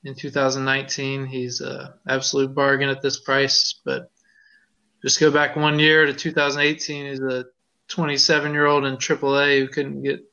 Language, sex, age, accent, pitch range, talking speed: English, male, 20-39, American, 135-160 Hz, 145 wpm